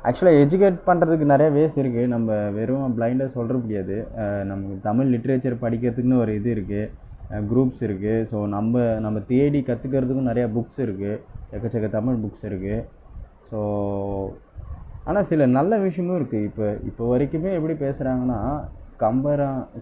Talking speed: 135 wpm